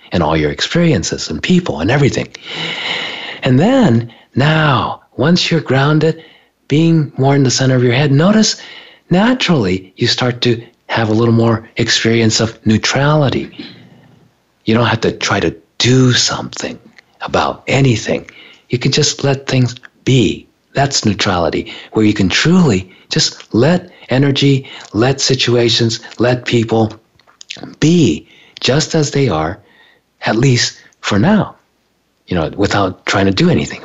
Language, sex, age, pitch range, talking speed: English, male, 50-69, 110-145 Hz, 140 wpm